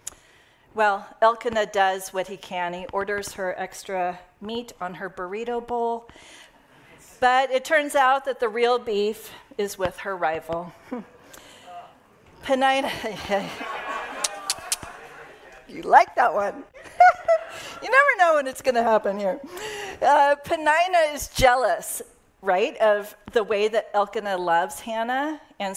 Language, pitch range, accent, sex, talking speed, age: English, 180-235 Hz, American, female, 125 wpm, 40-59